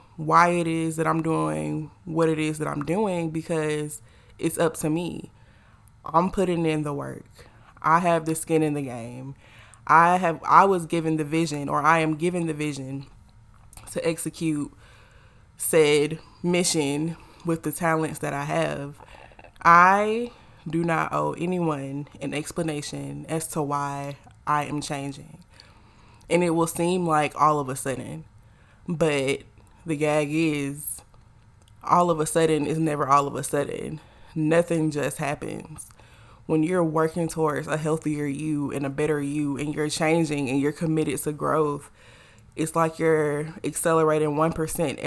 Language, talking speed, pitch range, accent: English, 155 wpm, 140-165 Hz, American